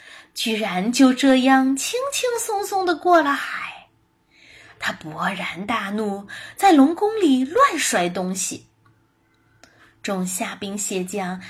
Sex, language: female, Chinese